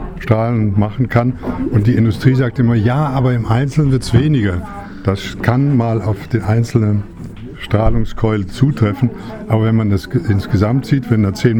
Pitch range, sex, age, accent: 105-125 Hz, male, 60-79, German